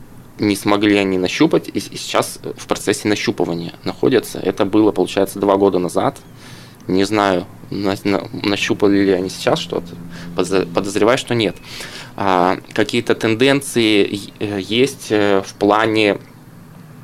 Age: 20-39